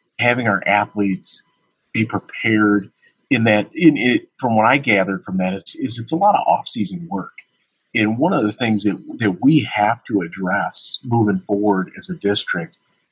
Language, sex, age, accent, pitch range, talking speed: English, male, 40-59, American, 100-120 Hz, 180 wpm